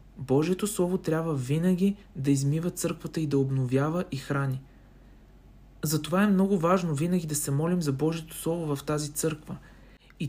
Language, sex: Bulgarian, male